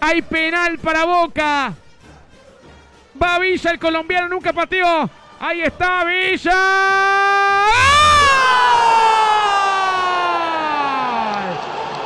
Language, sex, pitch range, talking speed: Spanish, male, 345-415 Hz, 70 wpm